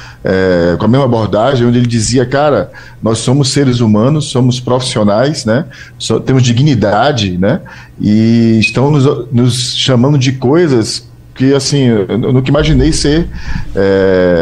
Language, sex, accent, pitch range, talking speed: Portuguese, male, Brazilian, 110-140 Hz, 135 wpm